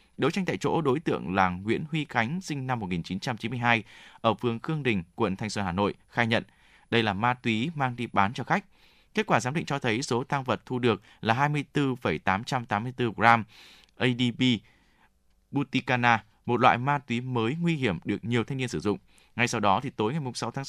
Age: 20-39